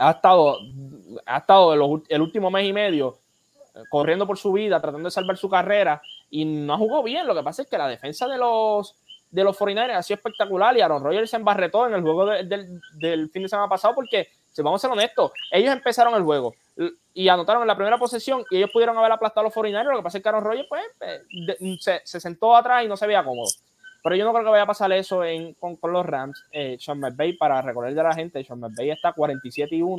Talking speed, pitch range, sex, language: 240 wpm, 150-200 Hz, male, English